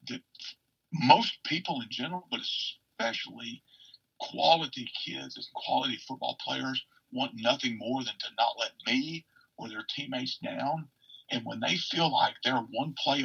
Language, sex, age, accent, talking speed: English, male, 50-69, American, 150 wpm